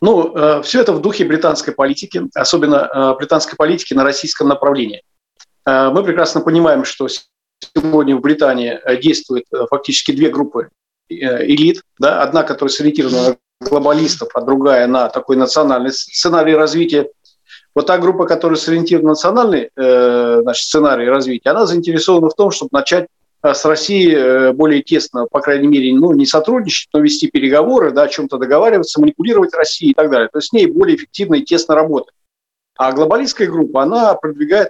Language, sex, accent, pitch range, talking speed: Russian, male, native, 140-195 Hz, 150 wpm